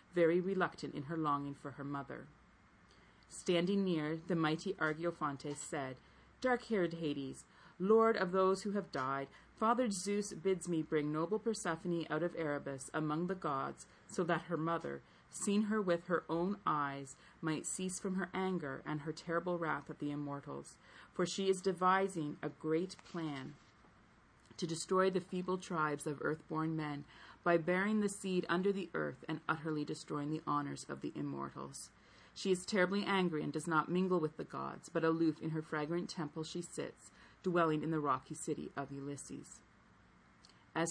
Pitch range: 150-185 Hz